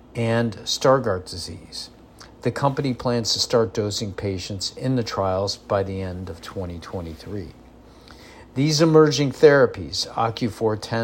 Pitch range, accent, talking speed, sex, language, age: 100-120 Hz, American, 125 wpm, male, English, 50-69